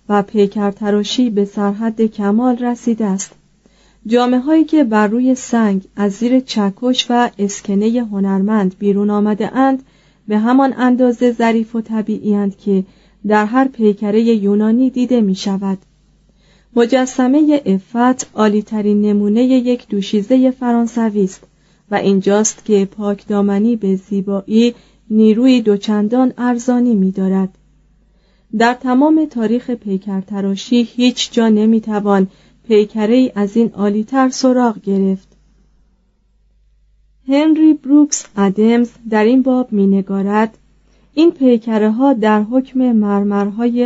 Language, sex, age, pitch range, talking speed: Persian, female, 30-49, 200-245 Hz, 110 wpm